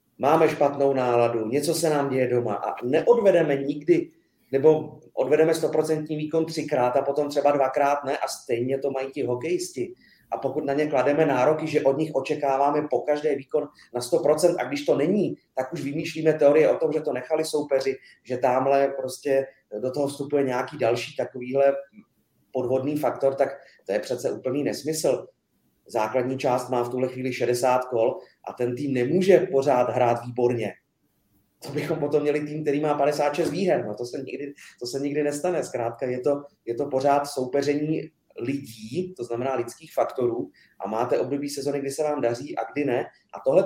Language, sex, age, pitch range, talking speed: Czech, male, 30-49, 130-155 Hz, 175 wpm